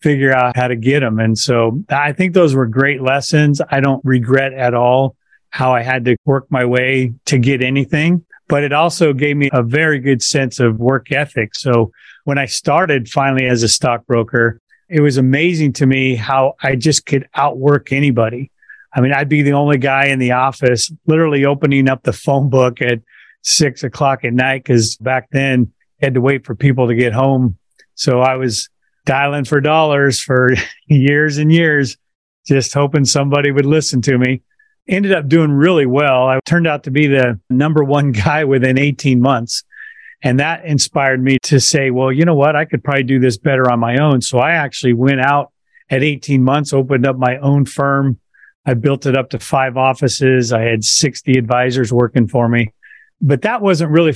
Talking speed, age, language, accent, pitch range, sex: 195 wpm, 40-59, English, American, 125-145 Hz, male